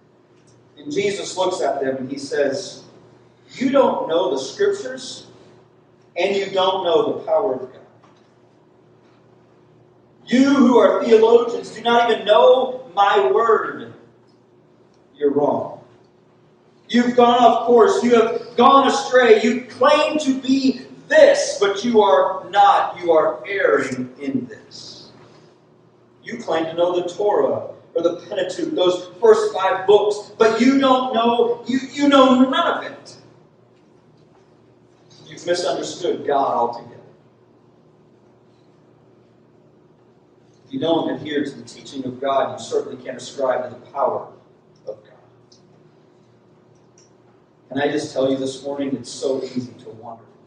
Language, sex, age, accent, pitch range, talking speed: English, male, 40-59, American, 160-260 Hz, 135 wpm